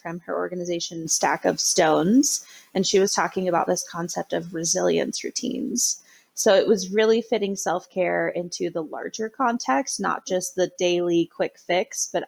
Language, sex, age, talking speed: English, female, 20-39, 160 wpm